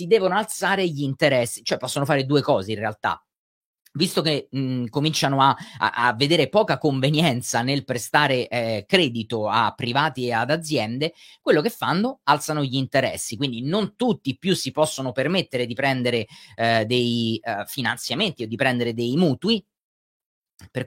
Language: Italian